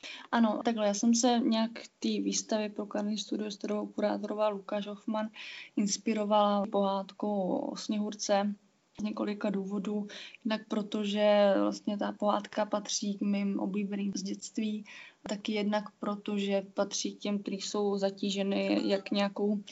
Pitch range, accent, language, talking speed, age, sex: 205-220 Hz, native, Czech, 135 wpm, 20-39, female